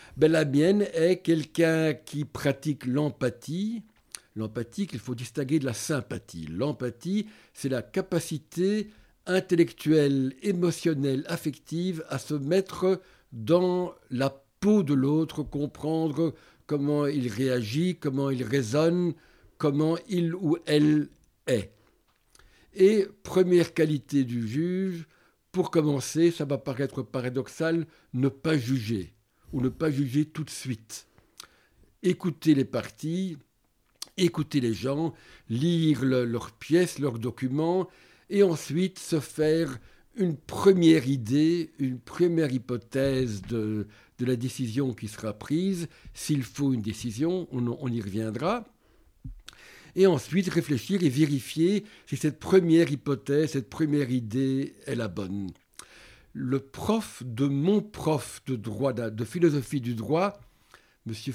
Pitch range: 125-170 Hz